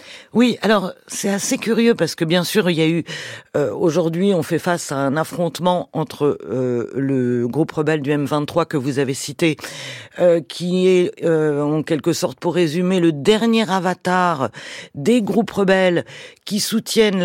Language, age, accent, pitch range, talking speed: French, 50-69, French, 155-195 Hz, 170 wpm